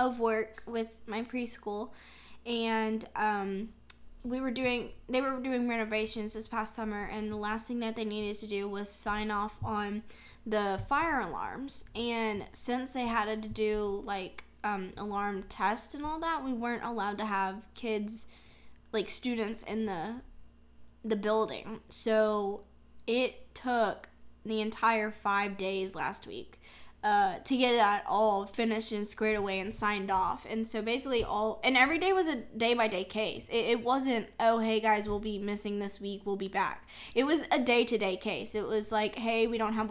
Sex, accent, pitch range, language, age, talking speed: female, American, 205-235 Hz, English, 10-29, 175 wpm